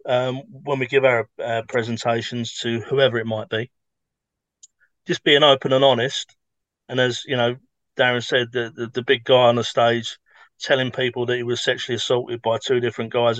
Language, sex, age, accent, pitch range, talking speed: English, male, 30-49, British, 115-135 Hz, 190 wpm